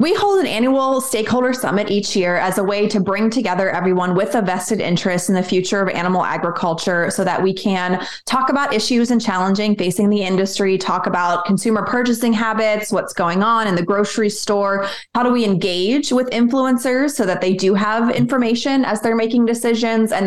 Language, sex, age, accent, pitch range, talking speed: English, female, 20-39, American, 185-225 Hz, 195 wpm